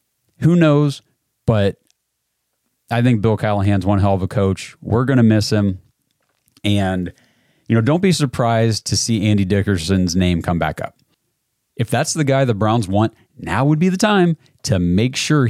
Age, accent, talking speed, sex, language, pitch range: 30-49, American, 180 wpm, male, English, 95-120 Hz